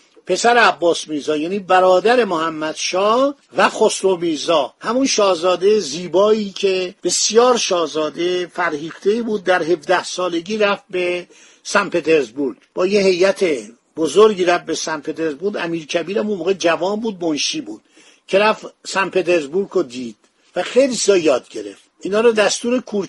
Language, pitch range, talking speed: Persian, 170-210 Hz, 145 wpm